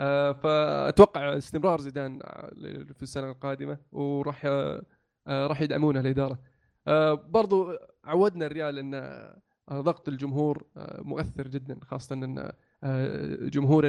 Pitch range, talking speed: 140-170 Hz, 90 wpm